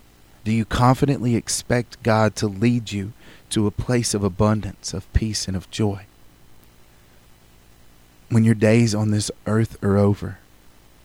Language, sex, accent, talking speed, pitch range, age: English, male, American, 140 wpm, 90-115 Hz, 40-59